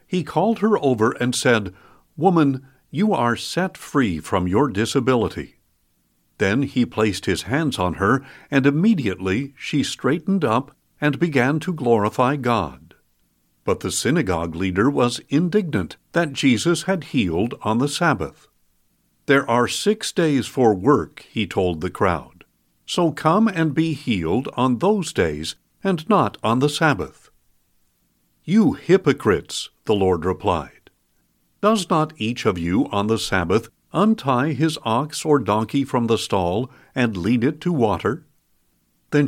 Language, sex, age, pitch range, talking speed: English, male, 60-79, 110-160 Hz, 145 wpm